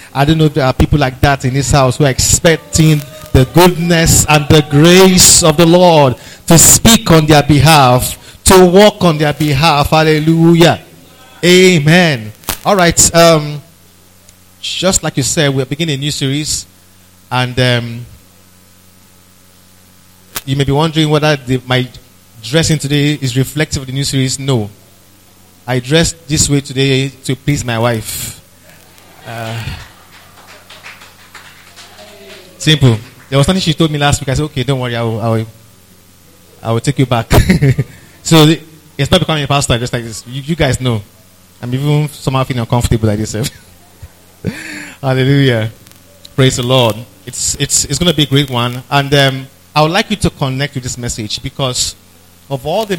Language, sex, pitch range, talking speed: English, male, 105-150 Hz, 165 wpm